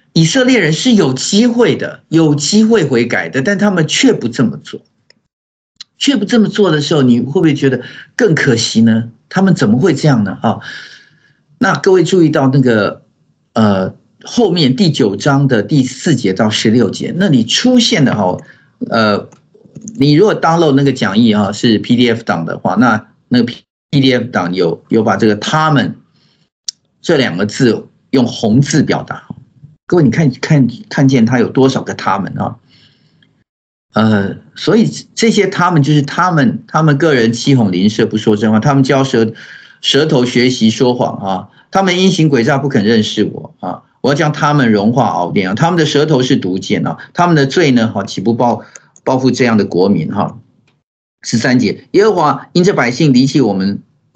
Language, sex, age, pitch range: Chinese, male, 50-69, 115-170 Hz